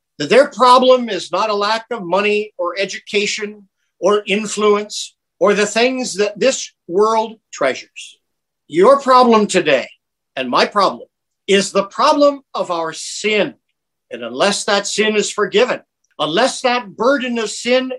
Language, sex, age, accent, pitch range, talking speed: English, male, 50-69, American, 190-245 Hz, 140 wpm